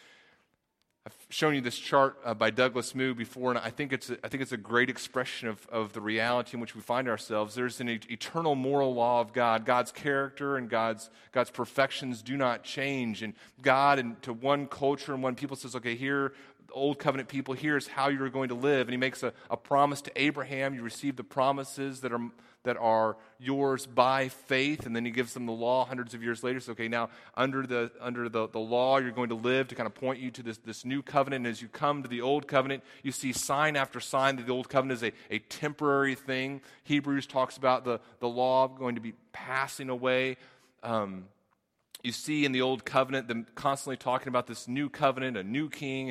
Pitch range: 120-135 Hz